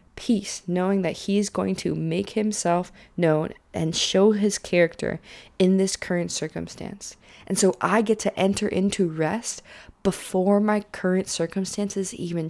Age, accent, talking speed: 20-39, American, 150 wpm